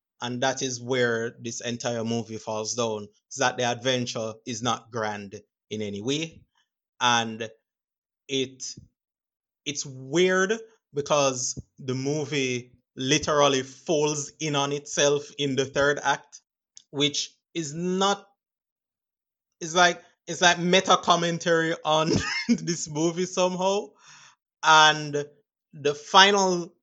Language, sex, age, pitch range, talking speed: English, male, 20-39, 125-165 Hz, 110 wpm